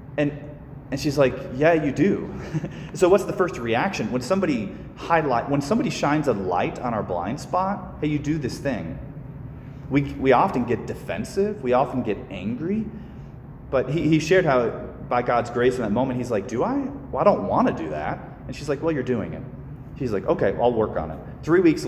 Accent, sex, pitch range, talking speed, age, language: American, male, 125-150 Hz, 205 wpm, 30-49, English